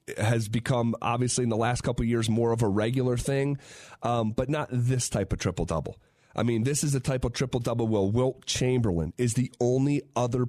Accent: American